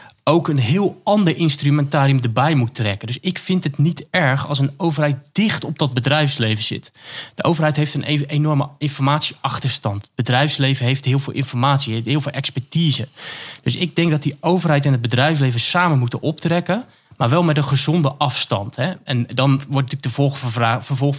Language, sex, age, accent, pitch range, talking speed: Dutch, male, 30-49, Dutch, 125-150 Hz, 170 wpm